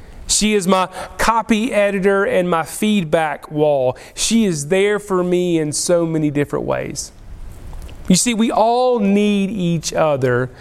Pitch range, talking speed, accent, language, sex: 145-220 Hz, 145 wpm, American, English, male